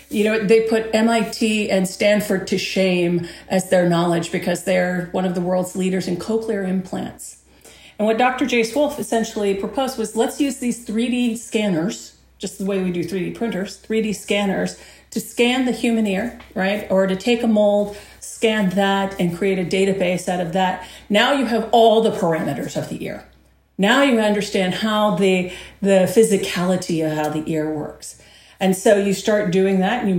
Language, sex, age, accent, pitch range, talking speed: English, female, 40-59, American, 185-225 Hz, 185 wpm